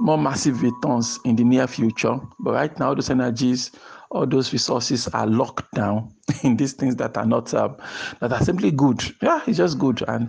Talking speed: 200 wpm